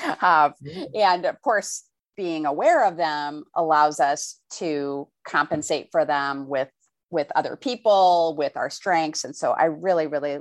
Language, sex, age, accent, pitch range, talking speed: English, female, 30-49, American, 165-225 Hz, 150 wpm